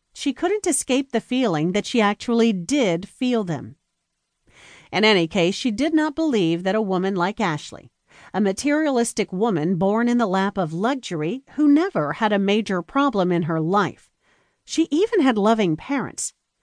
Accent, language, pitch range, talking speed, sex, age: American, English, 180-260 Hz, 165 wpm, female, 40-59